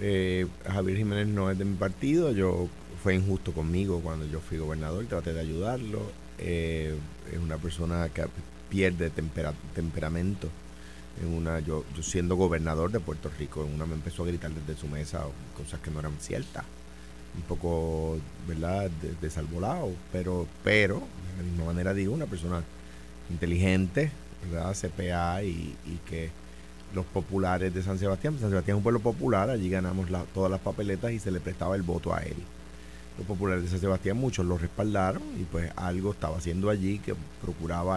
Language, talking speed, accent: Spanish, 170 wpm, Venezuelan